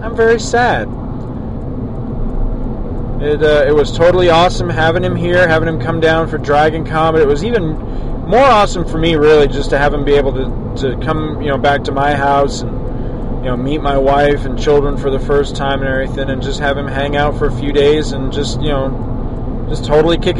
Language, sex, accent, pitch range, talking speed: English, male, American, 125-150 Hz, 215 wpm